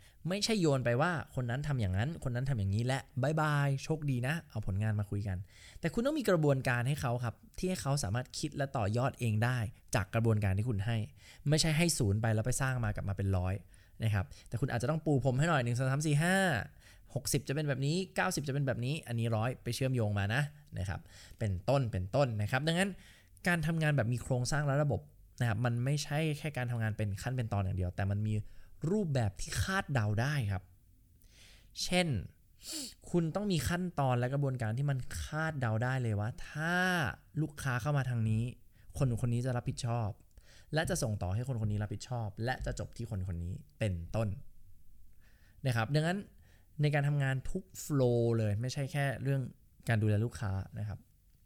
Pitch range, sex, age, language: 105-145 Hz, male, 20-39, English